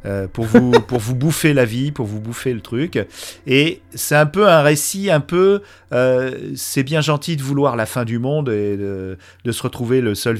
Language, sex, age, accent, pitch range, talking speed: French, male, 40-59, French, 110-145 Hz, 210 wpm